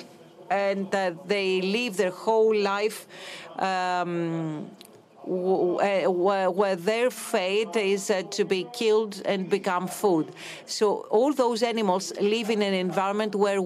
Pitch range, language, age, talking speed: 180-220 Hz, Greek, 40-59, 125 wpm